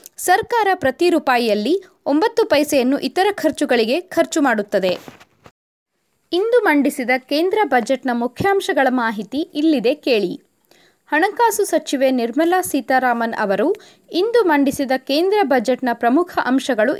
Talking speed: 100 wpm